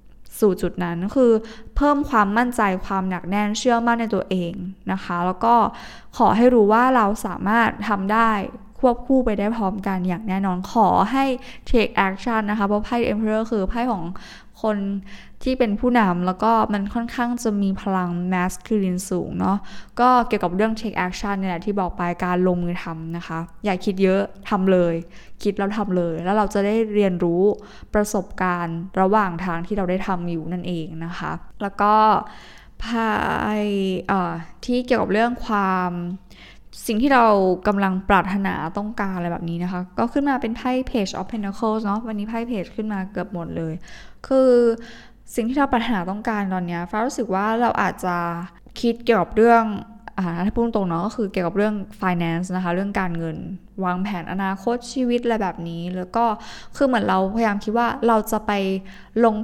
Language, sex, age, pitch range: Thai, female, 20-39, 185-230 Hz